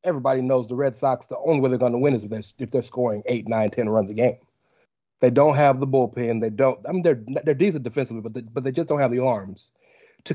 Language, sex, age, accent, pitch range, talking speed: English, male, 30-49, American, 125-155 Hz, 280 wpm